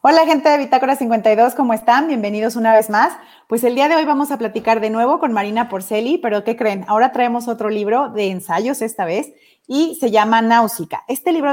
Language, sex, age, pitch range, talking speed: Spanish, female, 30-49, 195-235 Hz, 215 wpm